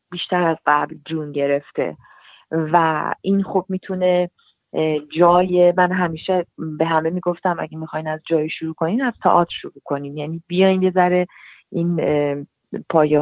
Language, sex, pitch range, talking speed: Persian, female, 160-190 Hz, 140 wpm